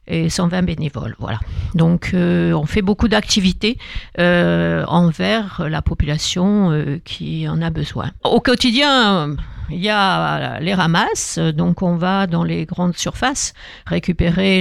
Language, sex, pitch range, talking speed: French, female, 170-210 Hz, 130 wpm